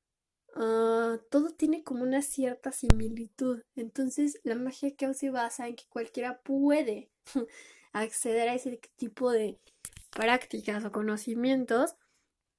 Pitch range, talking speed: 225-275 Hz, 120 wpm